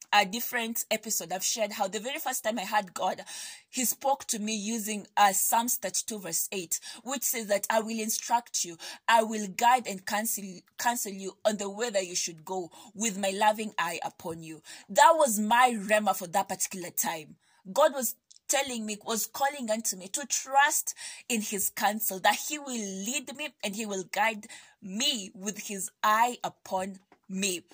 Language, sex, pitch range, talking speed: English, female, 195-245 Hz, 185 wpm